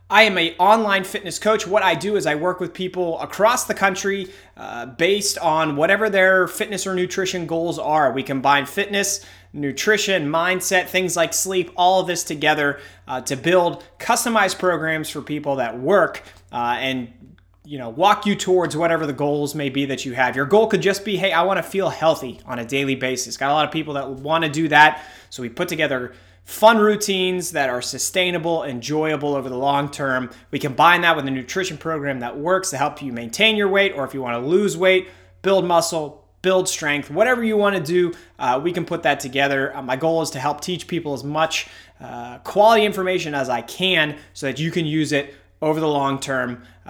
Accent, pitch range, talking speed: American, 135-185 Hz, 205 wpm